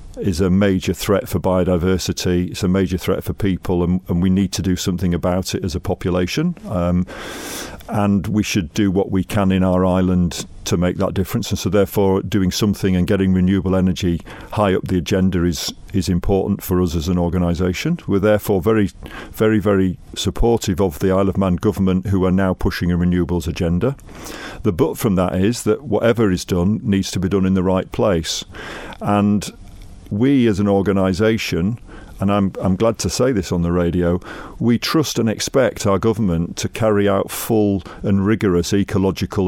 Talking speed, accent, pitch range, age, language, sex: 190 wpm, British, 90-105 Hz, 50-69, English, male